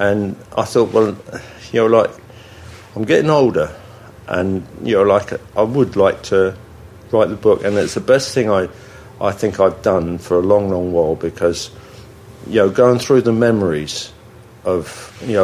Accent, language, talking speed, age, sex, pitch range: British, English, 175 wpm, 50-69, male, 95-115 Hz